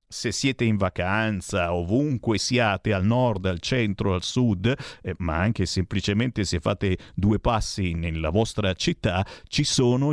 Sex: male